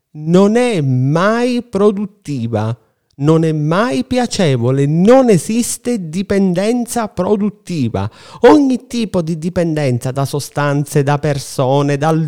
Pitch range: 140-205 Hz